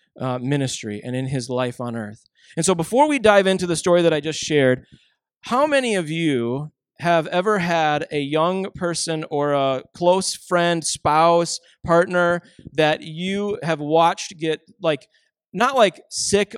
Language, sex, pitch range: English, male, 150-190 Hz